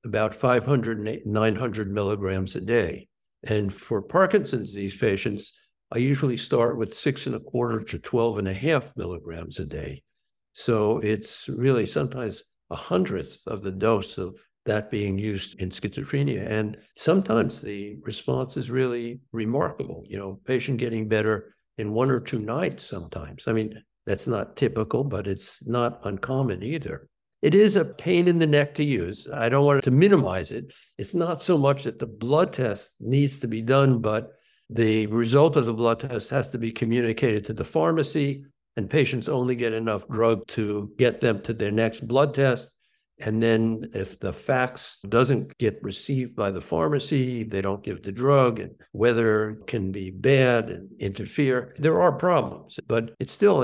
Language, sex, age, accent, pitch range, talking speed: English, male, 60-79, American, 105-135 Hz, 170 wpm